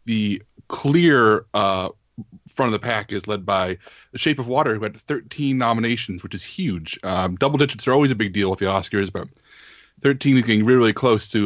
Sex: male